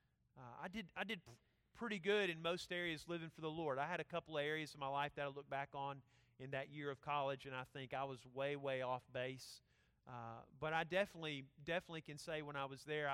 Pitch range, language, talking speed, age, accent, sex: 120-150 Hz, English, 240 wpm, 40-59, American, male